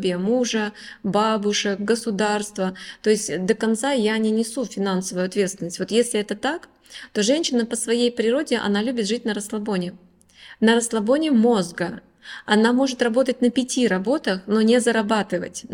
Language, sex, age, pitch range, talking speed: Russian, female, 20-39, 195-240 Hz, 145 wpm